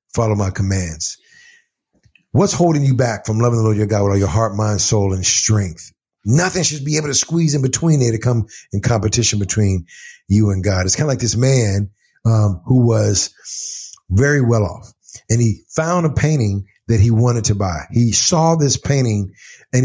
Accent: American